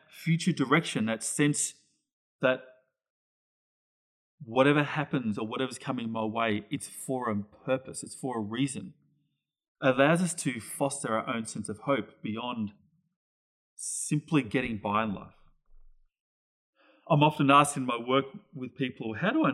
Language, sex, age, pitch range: English, male, 30-49, 105-150 Hz